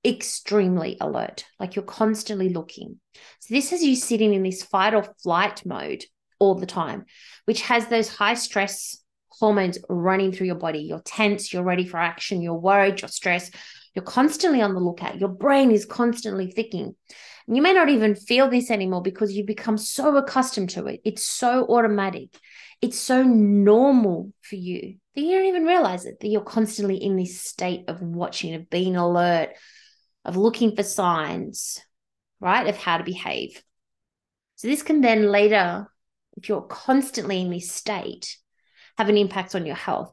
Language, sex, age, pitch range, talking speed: English, female, 20-39, 190-235 Hz, 175 wpm